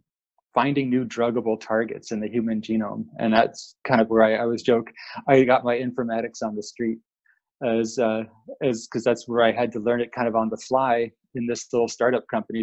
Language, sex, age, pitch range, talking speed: English, male, 20-39, 110-125 Hz, 215 wpm